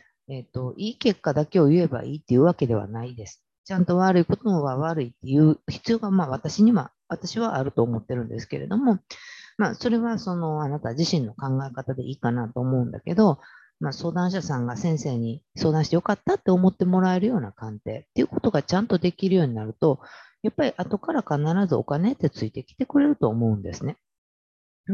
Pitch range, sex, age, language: 120-180 Hz, female, 40-59, Japanese